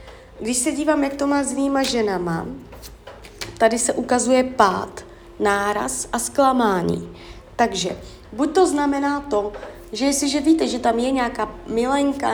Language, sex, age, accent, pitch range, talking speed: Czech, female, 30-49, native, 205-250 Hz, 140 wpm